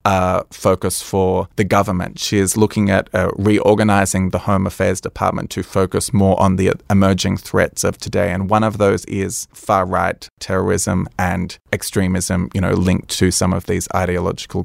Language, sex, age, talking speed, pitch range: English, male, 20-39, 170 wpm, 95-105 Hz